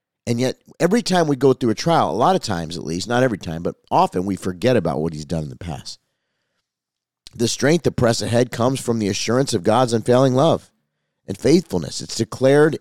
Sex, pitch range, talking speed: male, 120-165 Hz, 215 wpm